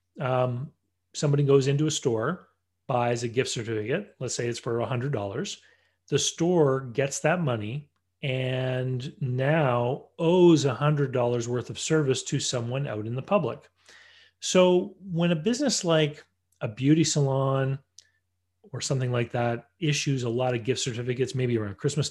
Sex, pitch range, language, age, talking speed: male, 120-150 Hz, English, 30-49, 155 wpm